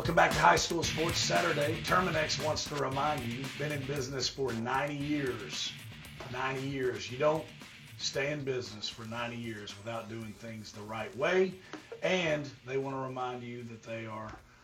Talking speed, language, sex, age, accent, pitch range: 180 wpm, English, male, 40-59, American, 115-135 Hz